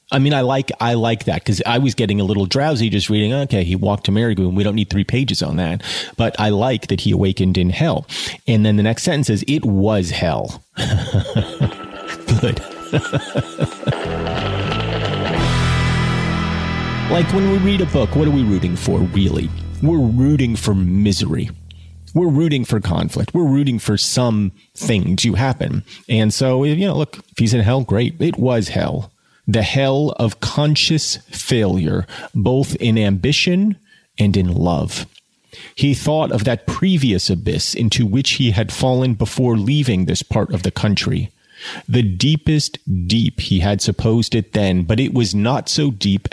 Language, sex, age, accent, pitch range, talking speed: English, male, 30-49, American, 100-135 Hz, 165 wpm